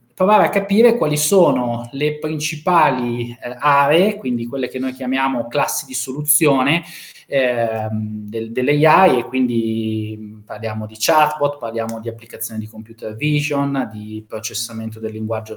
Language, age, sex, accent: Italian, 20-39, male, native